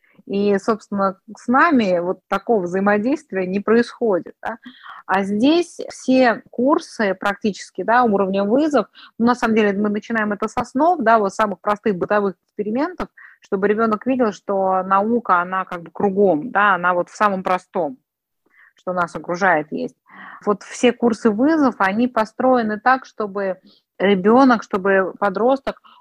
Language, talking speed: Russian, 145 wpm